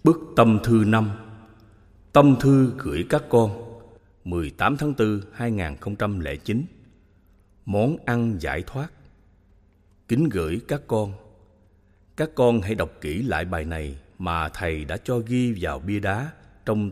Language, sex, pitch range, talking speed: Vietnamese, male, 95-125 Hz, 135 wpm